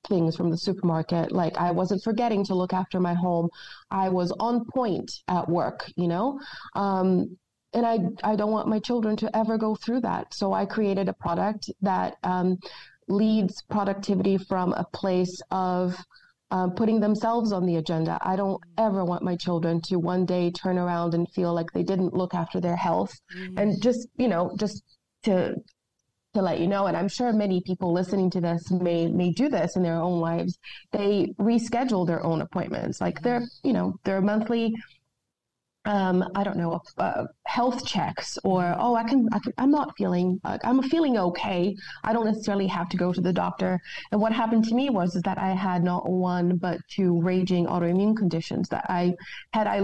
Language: English